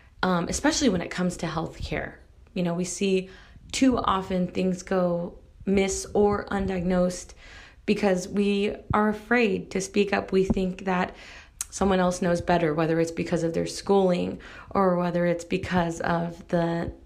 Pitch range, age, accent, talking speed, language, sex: 175-195 Hz, 20-39, American, 160 wpm, English, female